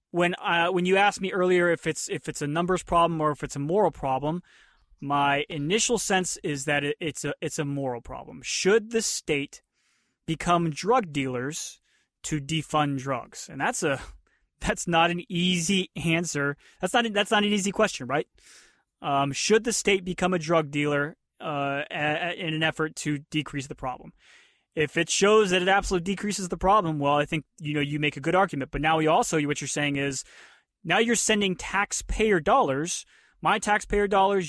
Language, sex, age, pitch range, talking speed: English, male, 20-39, 145-185 Hz, 190 wpm